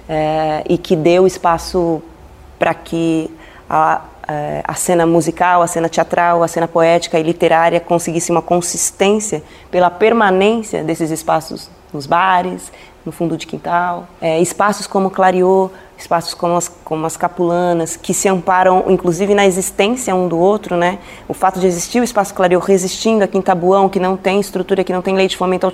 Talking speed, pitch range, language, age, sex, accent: 170 wpm, 165-190 Hz, Portuguese, 20-39, female, Brazilian